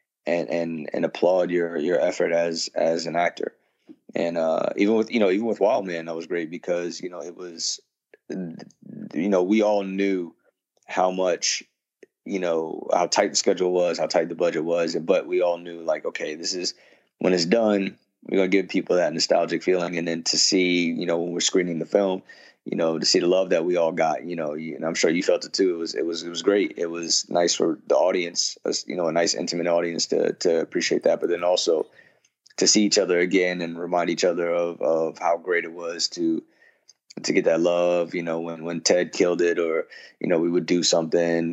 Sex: male